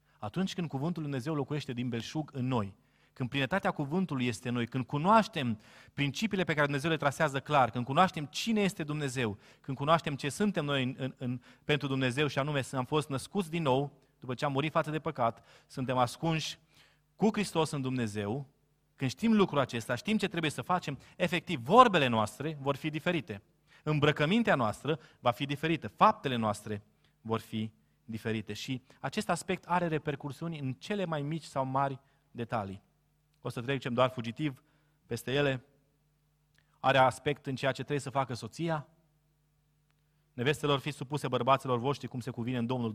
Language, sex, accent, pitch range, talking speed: Romanian, male, native, 125-155 Hz, 165 wpm